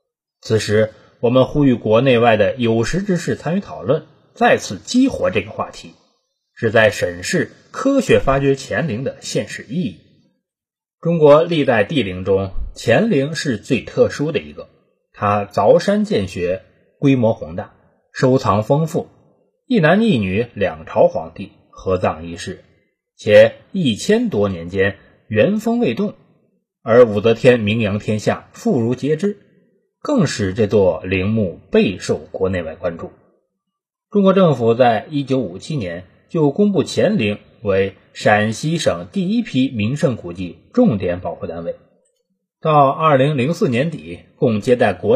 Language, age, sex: Chinese, 20-39, male